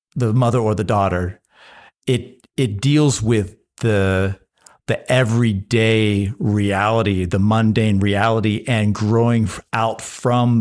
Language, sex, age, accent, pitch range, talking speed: English, male, 50-69, American, 95-120 Hz, 115 wpm